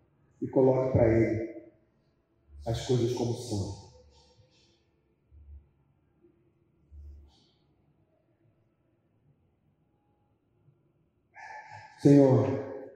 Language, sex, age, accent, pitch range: Portuguese, male, 40-59, Brazilian, 110-150 Hz